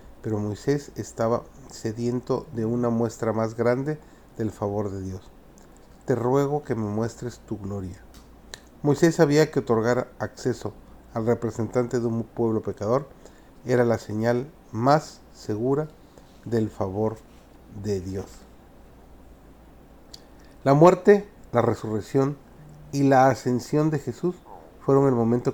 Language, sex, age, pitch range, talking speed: Spanish, male, 40-59, 110-140 Hz, 120 wpm